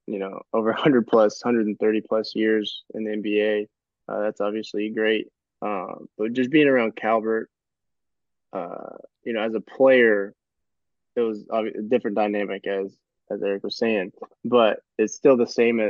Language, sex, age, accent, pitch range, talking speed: English, male, 20-39, American, 105-110 Hz, 160 wpm